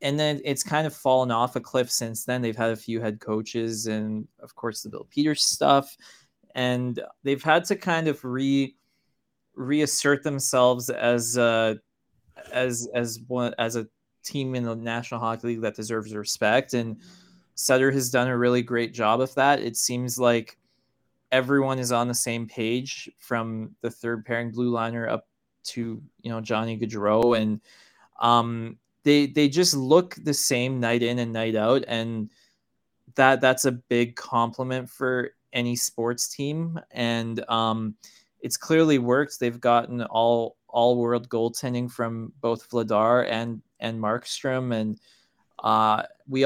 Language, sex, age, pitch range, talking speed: English, male, 20-39, 115-130 Hz, 160 wpm